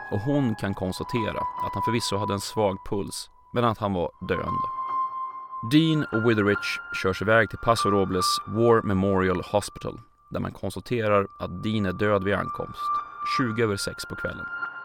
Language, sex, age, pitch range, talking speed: Swedish, male, 30-49, 100-155 Hz, 165 wpm